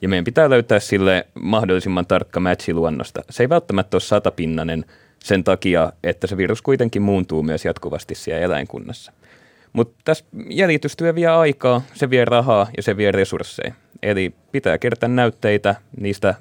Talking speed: 150 wpm